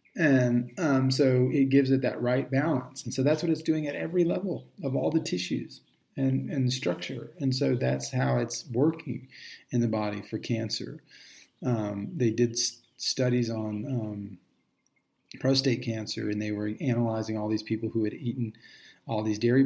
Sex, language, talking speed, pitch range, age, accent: male, English, 175 wpm, 115-135 Hz, 40-59, American